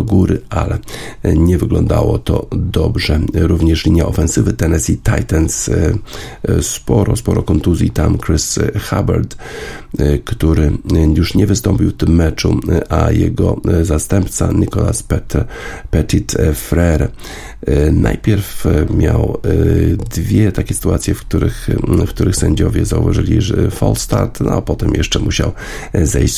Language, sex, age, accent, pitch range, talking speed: Polish, male, 50-69, native, 80-105 Hz, 115 wpm